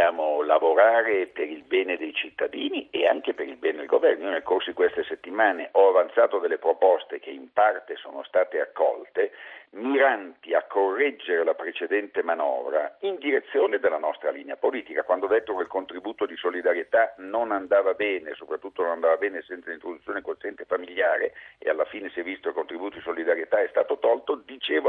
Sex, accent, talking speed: male, native, 185 wpm